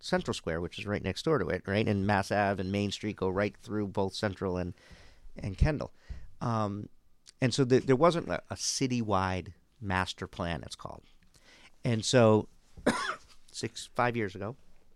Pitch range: 90-105 Hz